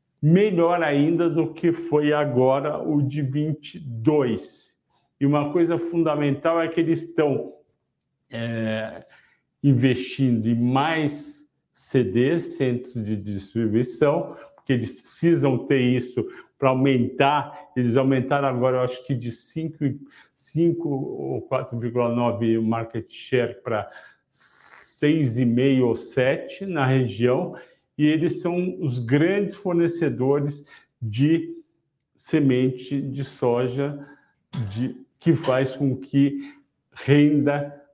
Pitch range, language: 130-165 Hz, Portuguese